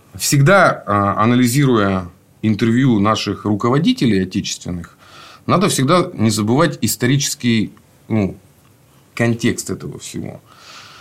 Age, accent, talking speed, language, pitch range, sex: 30-49, native, 80 wpm, Russian, 100-140 Hz, male